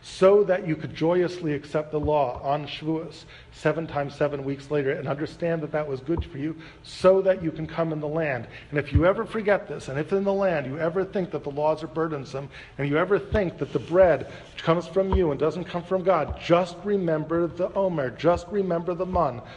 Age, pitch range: 40-59, 130-170 Hz